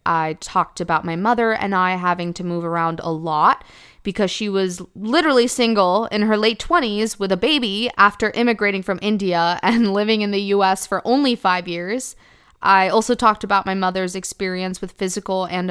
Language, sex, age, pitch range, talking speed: English, female, 20-39, 170-220 Hz, 185 wpm